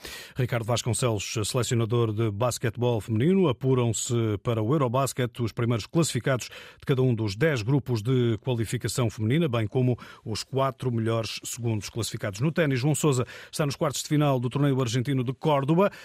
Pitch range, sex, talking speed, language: 120-150 Hz, male, 160 wpm, Portuguese